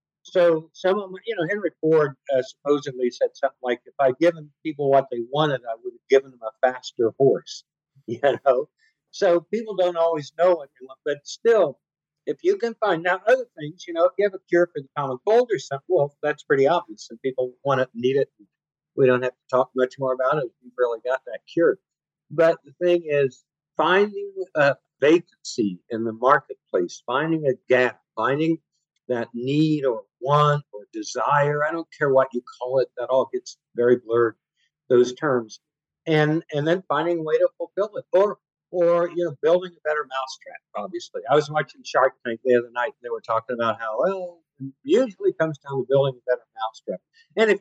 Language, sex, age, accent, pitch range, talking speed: English, male, 60-79, American, 135-195 Hz, 205 wpm